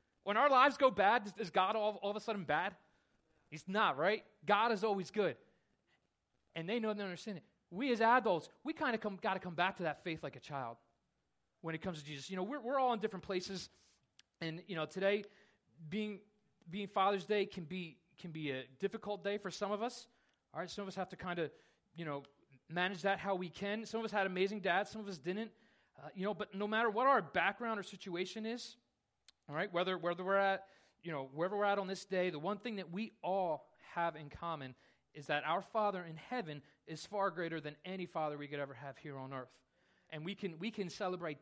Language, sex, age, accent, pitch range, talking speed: English, male, 30-49, American, 165-220 Hz, 235 wpm